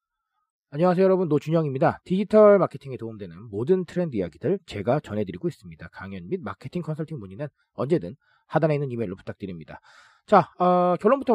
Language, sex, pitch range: Korean, male, 130-210 Hz